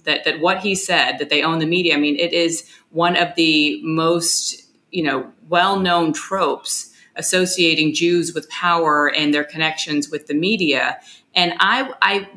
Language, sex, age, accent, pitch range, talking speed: English, female, 30-49, American, 155-190 Hz, 165 wpm